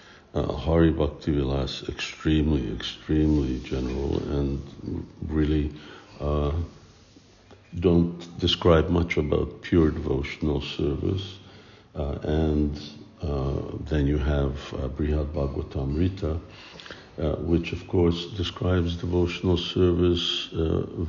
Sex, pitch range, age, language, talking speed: male, 75-85 Hz, 60-79, English, 95 wpm